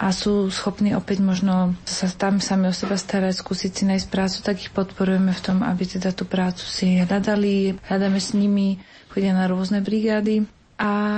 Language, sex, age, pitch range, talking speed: Slovak, female, 30-49, 185-205 Hz, 175 wpm